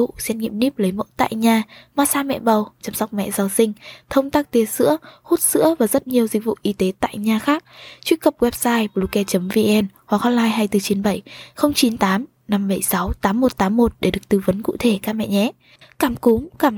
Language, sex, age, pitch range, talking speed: Vietnamese, female, 10-29, 200-245 Hz, 180 wpm